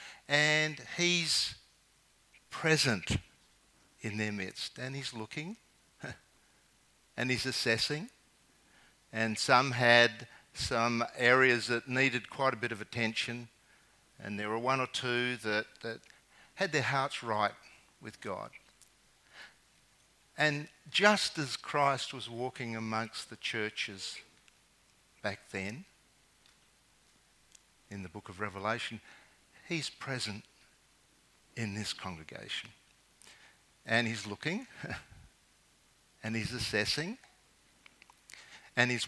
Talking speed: 105 wpm